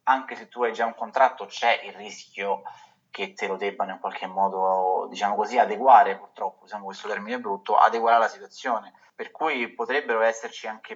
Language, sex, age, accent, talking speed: Italian, male, 30-49, native, 180 wpm